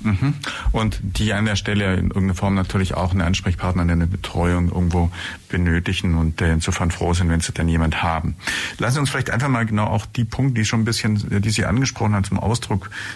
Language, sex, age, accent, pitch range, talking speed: German, male, 50-69, German, 95-115 Hz, 210 wpm